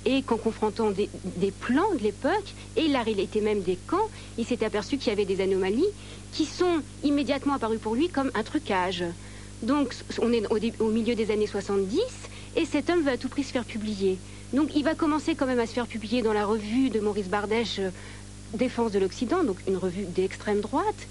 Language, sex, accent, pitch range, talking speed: French, female, French, 210-275 Hz, 215 wpm